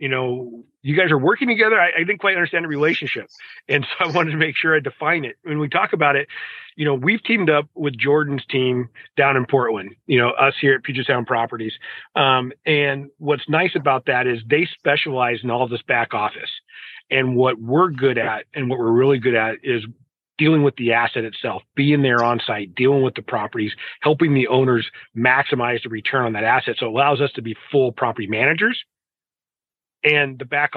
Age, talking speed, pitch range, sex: 40-59, 215 wpm, 125-150 Hz, male